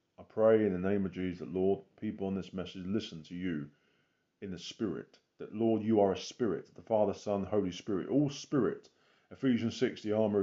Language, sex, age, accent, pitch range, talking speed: English, male, 30-49, British, 105-135 Hz, 205 wpm